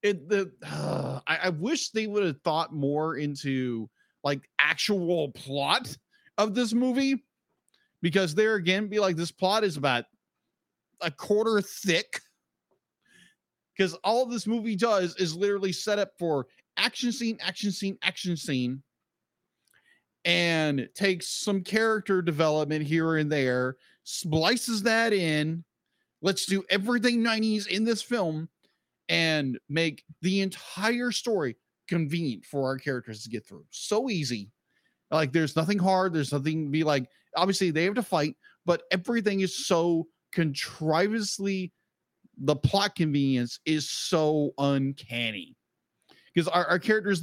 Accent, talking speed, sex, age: American, 135 wpm, male, 40-59